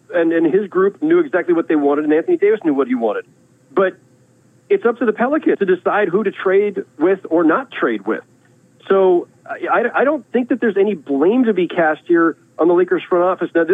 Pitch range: 150-245 Hz